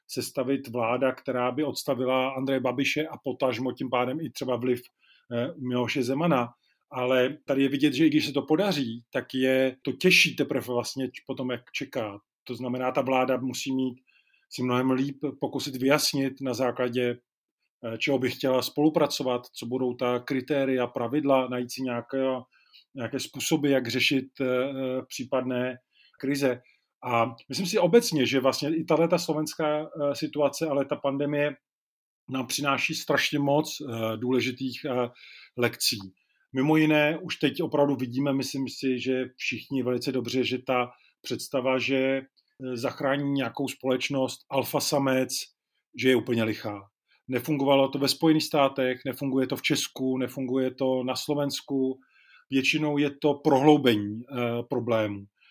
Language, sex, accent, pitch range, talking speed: Czech, male, native, 125-140 Hz, 140 wpm